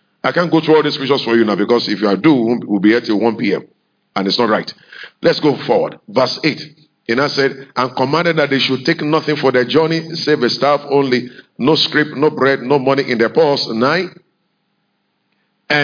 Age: 50-69